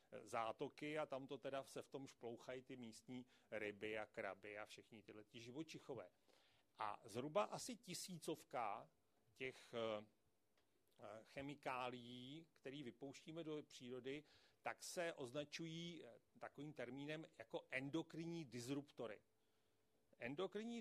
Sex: male